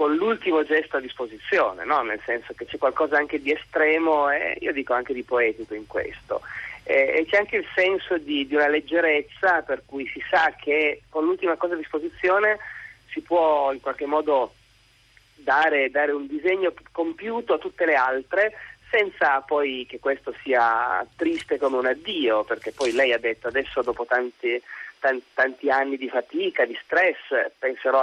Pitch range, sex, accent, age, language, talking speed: 130-180 Hz, male, native, 30-49, Italian, 170 wpm